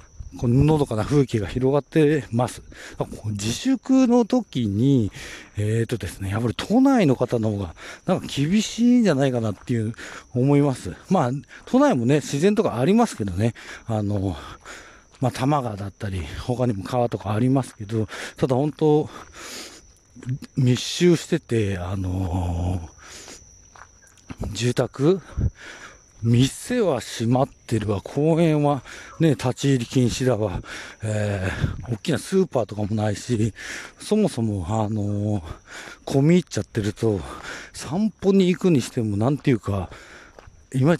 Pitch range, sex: 105-150 Hz, male